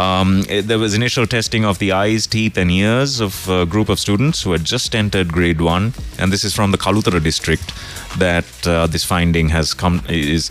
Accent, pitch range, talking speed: Indian, 85-110 Hz, 205 wpm